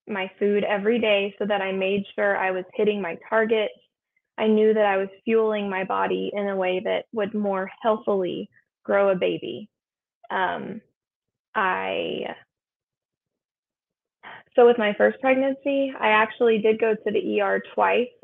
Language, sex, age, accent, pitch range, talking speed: English, female, 20-39, American, 200-240 Hz, 155 wpm